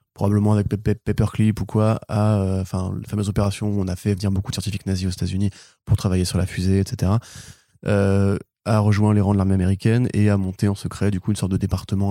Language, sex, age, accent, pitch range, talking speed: French, male, 20-39, French, 95-115 Hz, 245 wpm